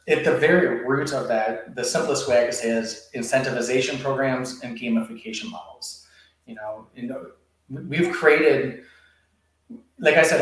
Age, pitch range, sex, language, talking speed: 30-49, 115-145 Hz, male, English, 155 wpm